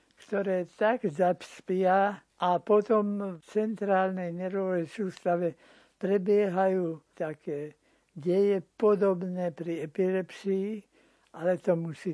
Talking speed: 90 wpm